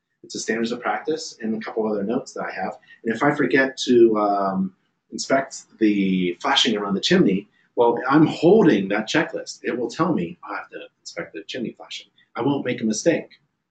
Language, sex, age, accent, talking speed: English, male, 30-49, American, 200 wpm